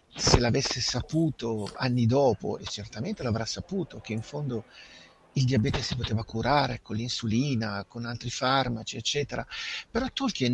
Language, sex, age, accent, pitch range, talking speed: Italian, male, 50-69, native, 115-150 Hz, 140 wpm